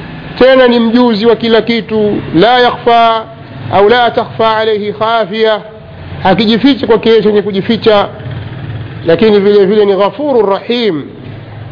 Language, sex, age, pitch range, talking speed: Swahili, male, 50-69, 200-235 Hz, 130 wpm